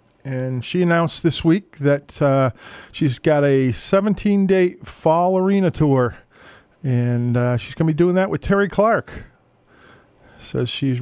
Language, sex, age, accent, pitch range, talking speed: English, male, 40-59, American, 125-160 Hz, 140 wpm